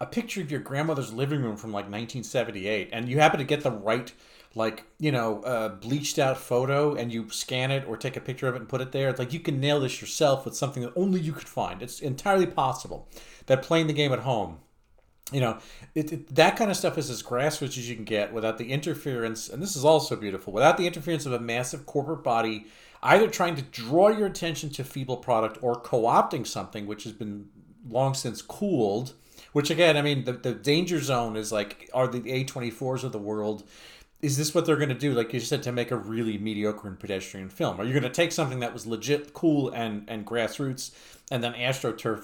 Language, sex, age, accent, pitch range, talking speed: English, male, 40-59, American, 115-155 Hz, 225 wpm